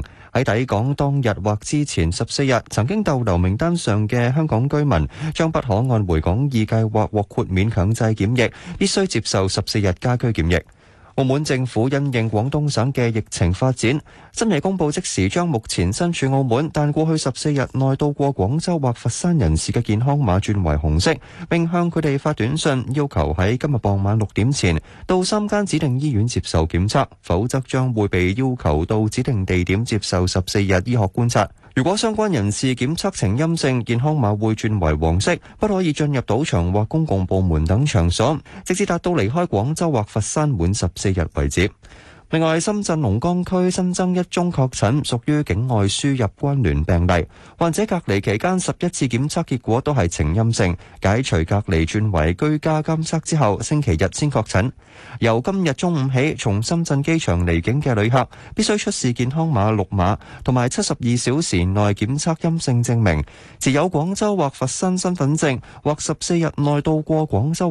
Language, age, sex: Chinese, 20-39, male